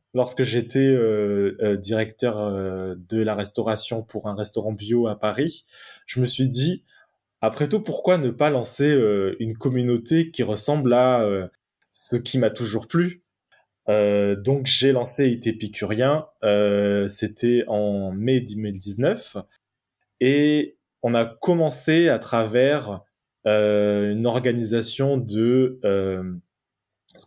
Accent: French